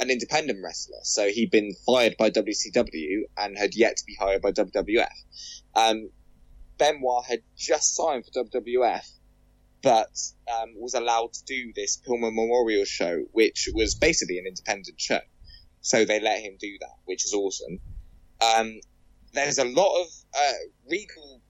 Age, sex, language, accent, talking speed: 20-39, male, English, British, 155 wpm